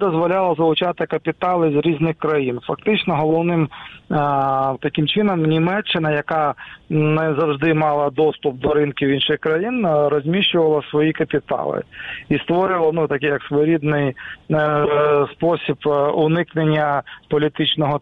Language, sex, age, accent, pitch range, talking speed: Ukrainian, male, 40-59, native, 145-165 Hz, 105 wpm